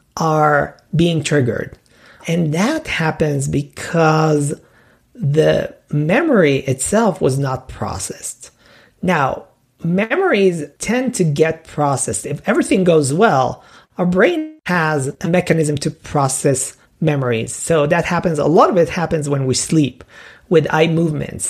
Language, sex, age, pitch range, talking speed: English, male, 40-59, 145-185 Hz, 125 wpm